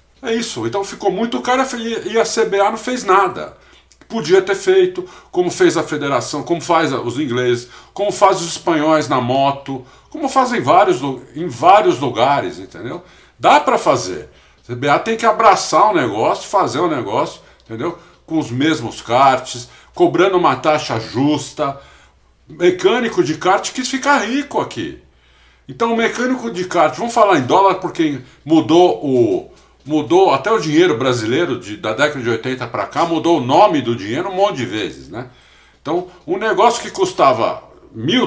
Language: Portuguese